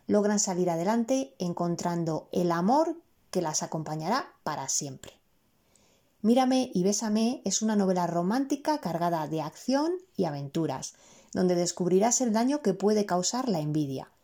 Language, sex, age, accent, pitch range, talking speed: Spanish, female, 20-39, Spanish, 175-235 Hz, 135 wpm